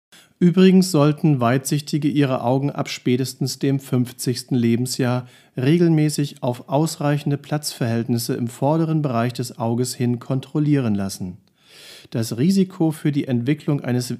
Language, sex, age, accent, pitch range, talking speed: German, male, 40-59, German, 125-155 Hz, 120 wpm